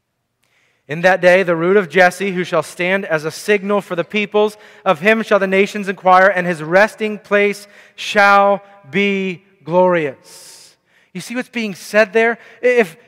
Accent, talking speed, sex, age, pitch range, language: American, 165 wpm, male, 30-49, 185-220 Hz, English